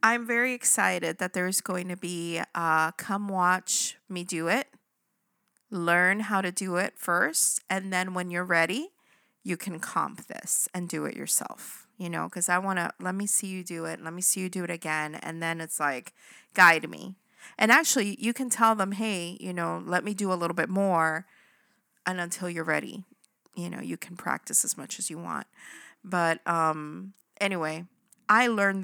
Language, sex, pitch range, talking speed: English, female, 170-210 Hz, 195 wpm